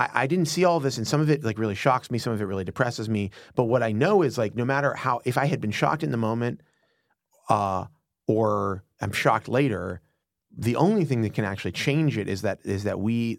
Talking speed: 255 wpm